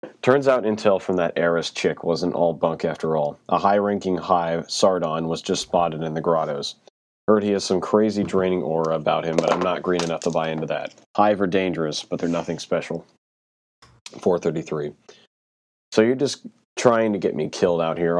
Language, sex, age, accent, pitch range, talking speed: English, male, 30-49, American, 85-105 Hz, 190 wpm